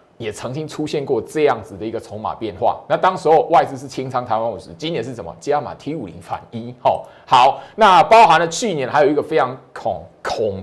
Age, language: 30-49, Chinese